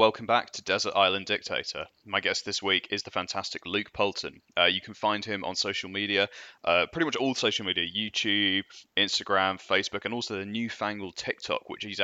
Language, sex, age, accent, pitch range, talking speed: English, male, 20-39, British, 95-110 Hz, 195 wpm